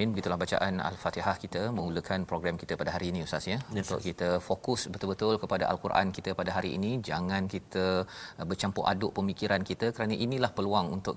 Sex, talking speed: male, 175 wpm